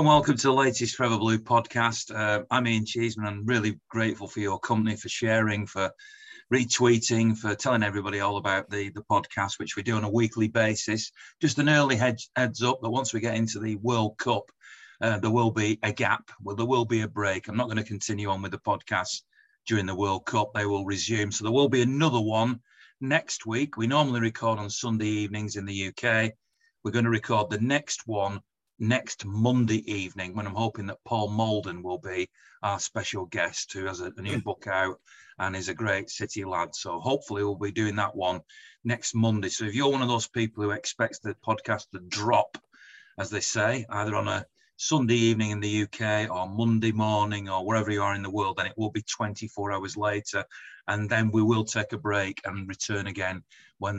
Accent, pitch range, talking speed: British, 100-115 Hz, 210 wpm